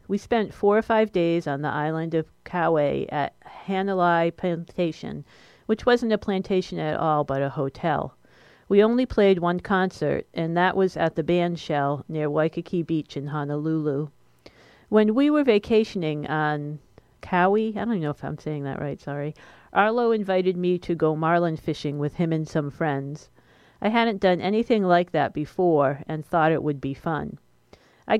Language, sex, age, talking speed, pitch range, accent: English, female, 40-59, 170 wpm, 150-195 Hz, American